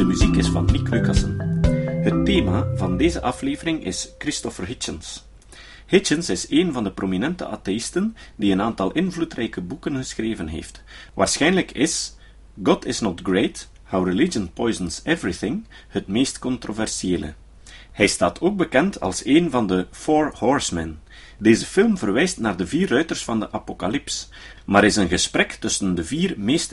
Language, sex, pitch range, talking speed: Dutch, male, 95-145 Hz, 155 wpm